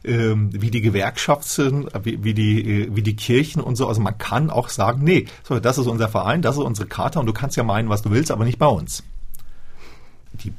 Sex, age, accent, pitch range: male, 40-59, German, 110-145 Hz